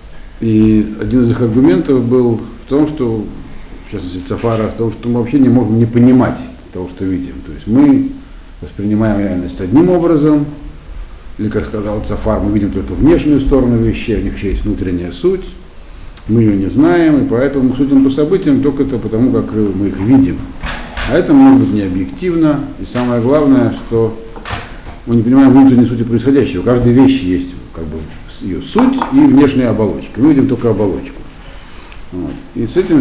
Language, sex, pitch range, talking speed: Russian, male, 90-135 Hz, 180 wpm